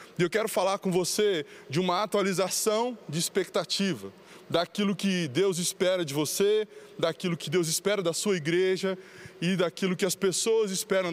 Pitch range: 160-195 Hz